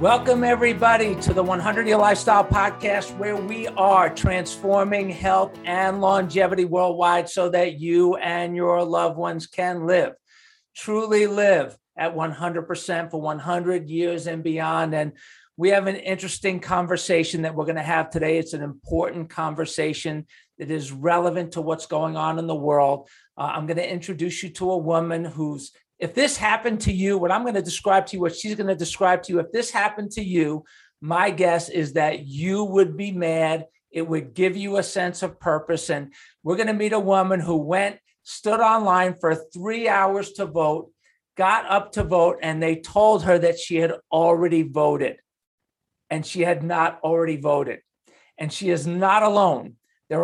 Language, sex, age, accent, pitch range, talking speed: English, male, 50-69, American, 165-195 Hz, 180 wpm